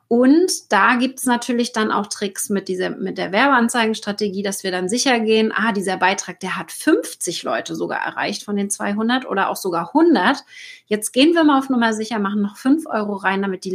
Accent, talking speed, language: German, 210 wpm, German